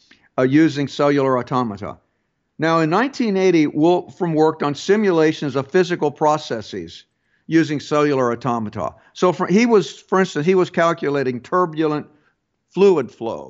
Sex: male